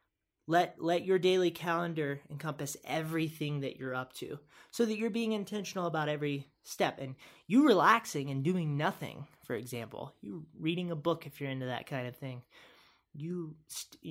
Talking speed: 170 wpm